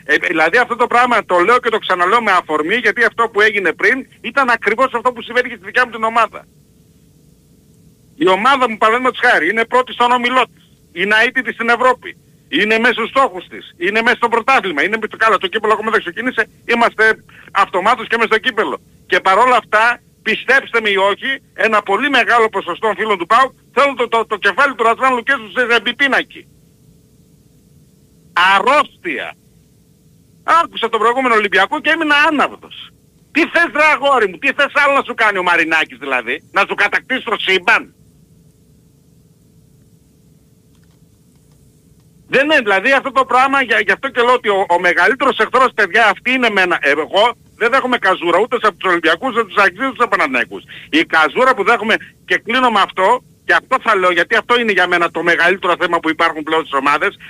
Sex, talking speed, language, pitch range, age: male, 180 wpm, Greek, 195-255 Hz, 50-69